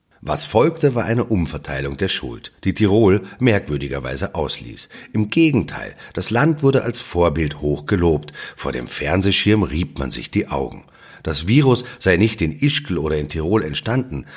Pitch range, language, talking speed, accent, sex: 75-115 Hz, German, 155 wpm, German, male